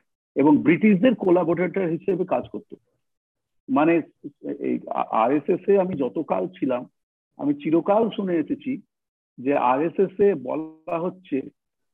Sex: male